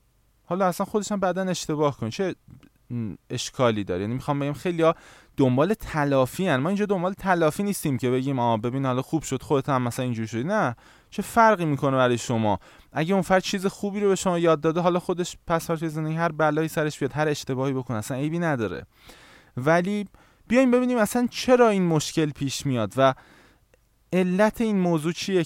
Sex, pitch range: male, 125-170 Hz